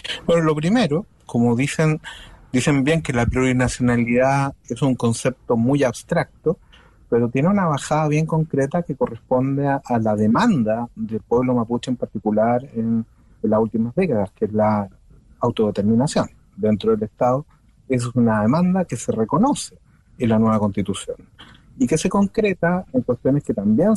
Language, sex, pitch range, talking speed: Spanish, male, 110-145 Hz, 155 wpm